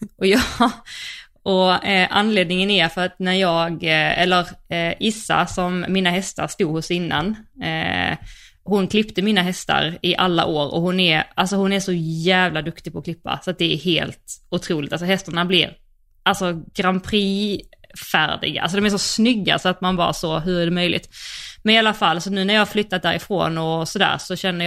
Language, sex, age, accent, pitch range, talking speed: Swedish, female, 20-39, native, 175-215 Hz, 200 wpm